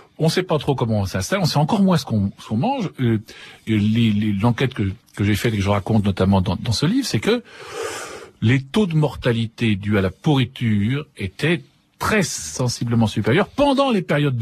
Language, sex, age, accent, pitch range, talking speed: French, male, 50-69, French, 100-155 Hz, 210 wpm